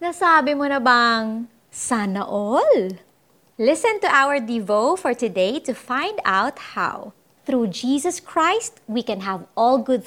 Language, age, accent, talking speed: Filipino, 30-49, native, 145 wpm